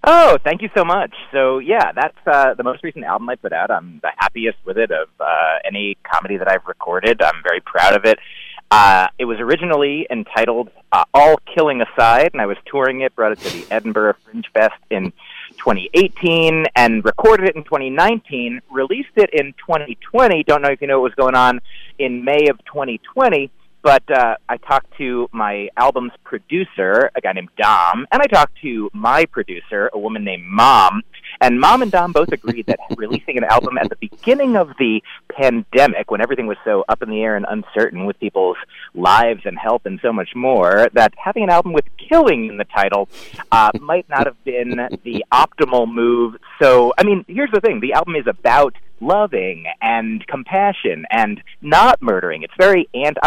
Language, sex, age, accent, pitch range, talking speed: English, male, 30-49, American, 120-190 Hz, 195 wpm